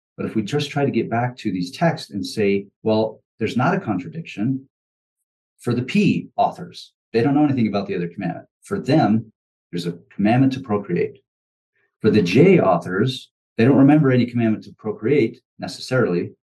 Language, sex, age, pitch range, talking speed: English, male, 40-59, 95-130 Hz, 180 wpm